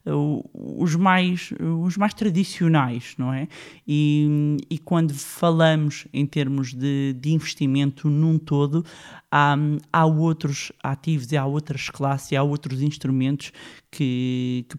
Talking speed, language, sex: 125 wpm, Portuguese, male